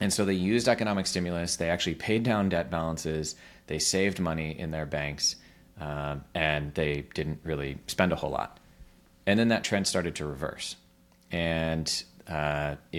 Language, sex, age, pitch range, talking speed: English, male, 30-49, 75-90 Hz, 165 wpm